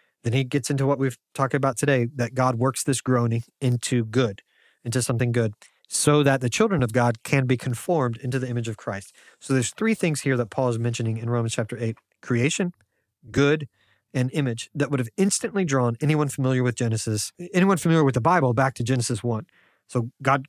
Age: 30-49